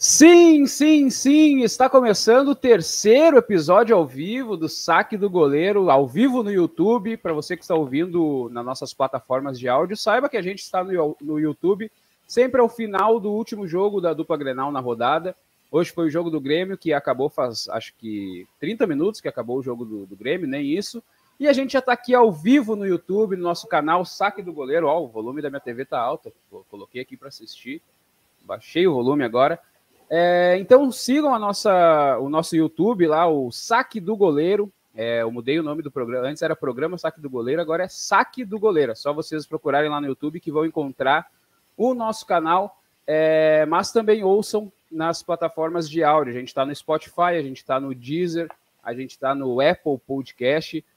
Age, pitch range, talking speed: 20-39, 145-220 Hz, 195 wpm